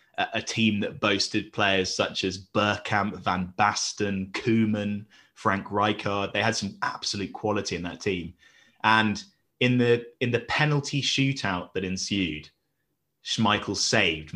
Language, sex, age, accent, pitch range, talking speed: English, male, 30-49, British, 90-115 Hz, 135 wpm